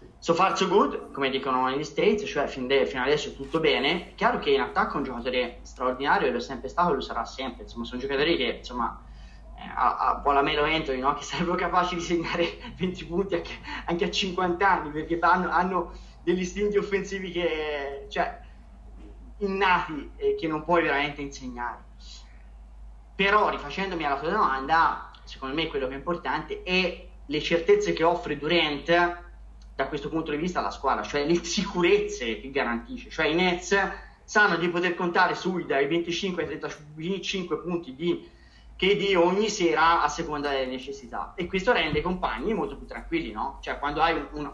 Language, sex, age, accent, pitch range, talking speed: Italian, male, 20-39, native, 140-180 Hz, 180 wpm